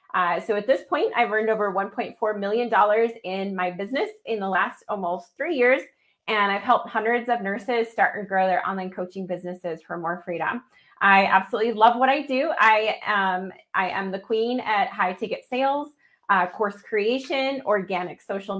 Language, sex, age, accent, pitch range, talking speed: English, female, 30-49, American, 195-240 Hz, 180 wpm